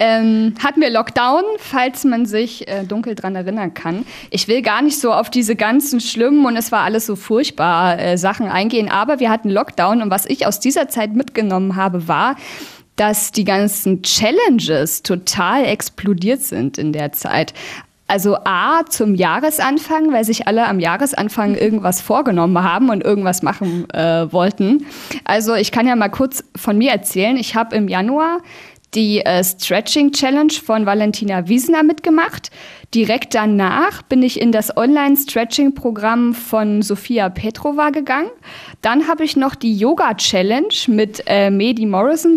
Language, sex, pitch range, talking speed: German, female, 205-270 Hz, 155 wpm